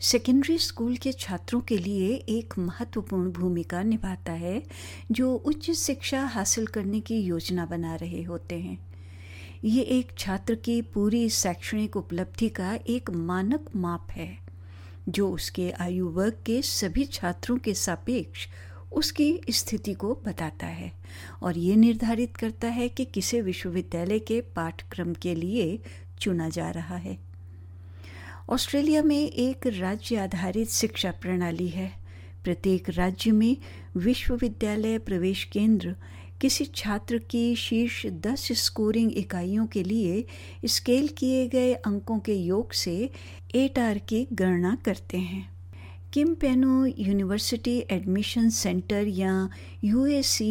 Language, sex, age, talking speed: Hindi, female, 60-79, 125 wpm